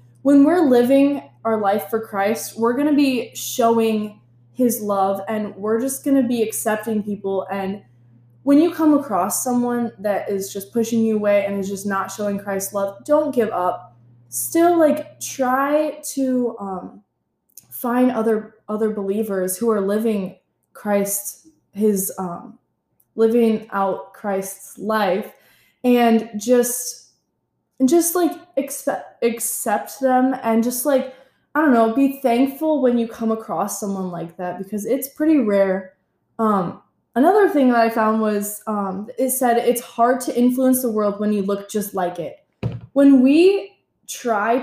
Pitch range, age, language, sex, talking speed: 200-260 Hz, 20-39, English, female, 155 wpm